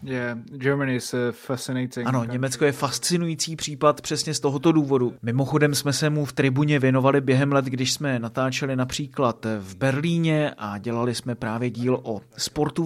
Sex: male